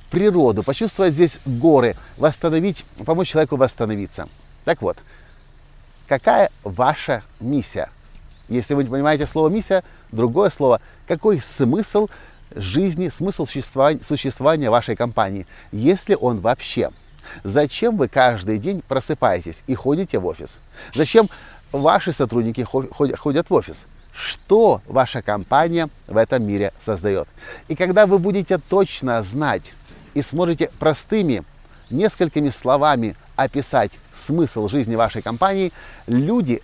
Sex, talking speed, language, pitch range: male, 115 wpm, Russian, 115-160 Hz